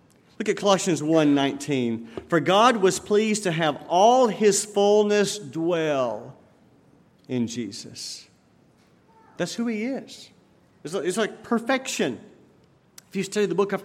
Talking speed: 125 wpm